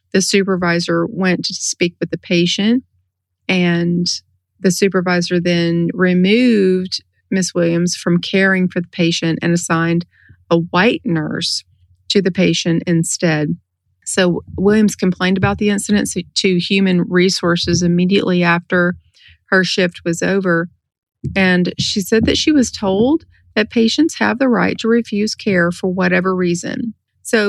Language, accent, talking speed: English, American, 140 wpm